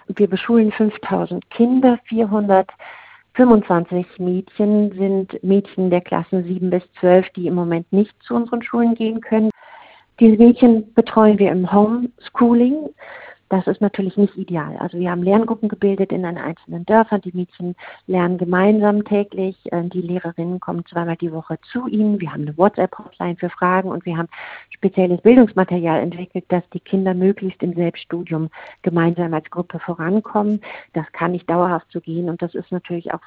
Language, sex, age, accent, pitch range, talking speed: German, female, 50-69, German, 175-205 Hz, 160 wpm